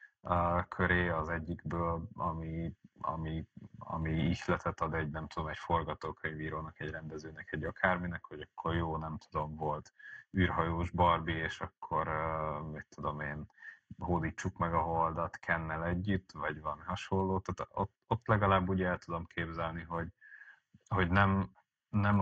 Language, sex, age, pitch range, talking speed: Hungarian, male, 30-49, 80-95 Hz, 145 wpm